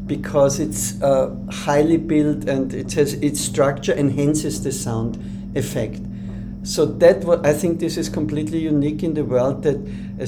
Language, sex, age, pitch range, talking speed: English, male, 50-69, 130-155 Hz, 165 wpm